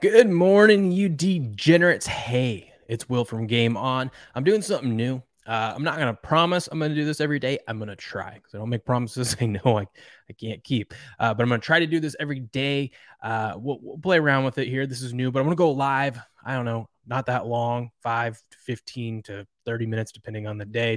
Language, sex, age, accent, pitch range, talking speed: English, male, 20-39, American, 115-140 Hz, 245 wpm